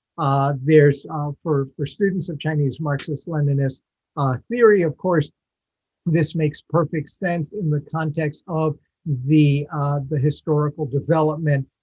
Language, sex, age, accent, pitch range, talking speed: English, male, 50-69, American, 140-165 Hz, 130 wpm